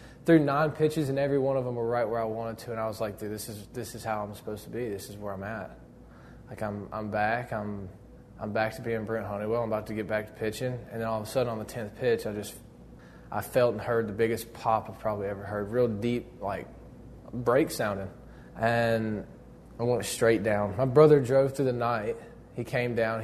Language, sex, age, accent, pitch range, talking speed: English, male, 20-39, American, 110-125 Hz, 240 wpm